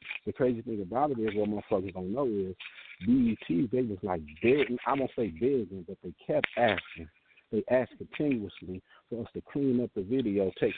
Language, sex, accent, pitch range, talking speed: English, male, American, 105-140 Hz, 205 wpm